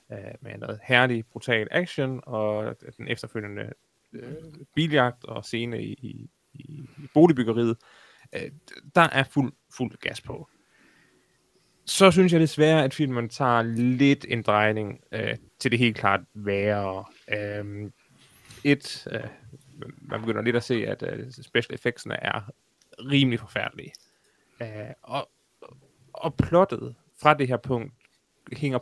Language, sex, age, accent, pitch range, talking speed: Danish, male, 20-39, native, 115-145 Hz, 130 wpm